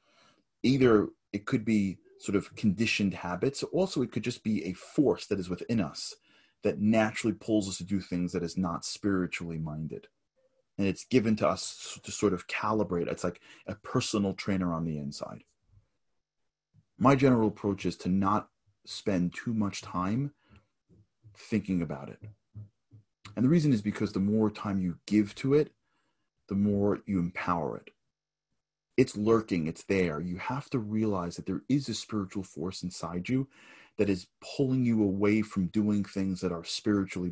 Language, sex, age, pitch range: English, male, 30-49, 90-110 Hz